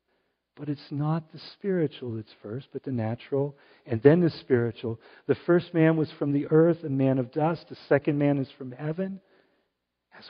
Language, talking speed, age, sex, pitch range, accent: English, 185 wpm, 50-69, male, 135-180 Hz, American